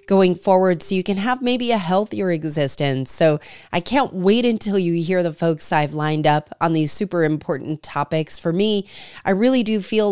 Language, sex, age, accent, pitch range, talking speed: English, female, 30-49, American, 165-210 Hz, 195 wpm